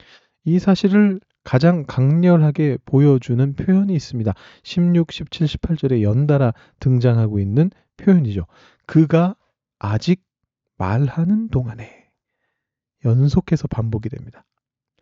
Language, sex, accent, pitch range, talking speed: English, male, Korean, 125-175 Hz, 85 wpm